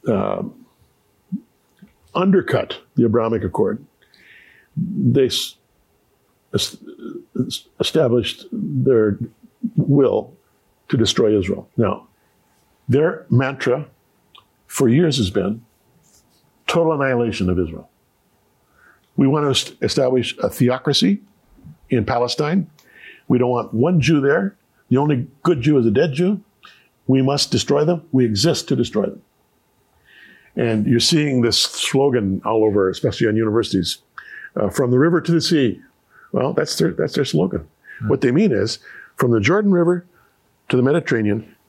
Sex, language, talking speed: male, English, 125 wpm